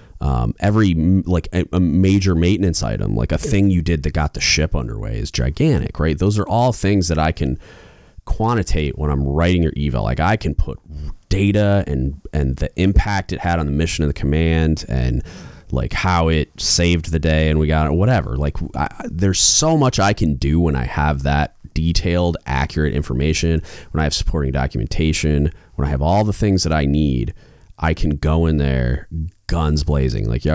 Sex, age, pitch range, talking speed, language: male, 30-49, 70-90 Hz, 200 wpm, English